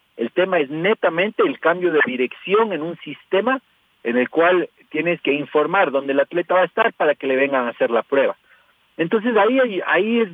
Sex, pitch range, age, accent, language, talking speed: male, 150-210 Hz, 50-69, Mexican, Spanish, 205 wpm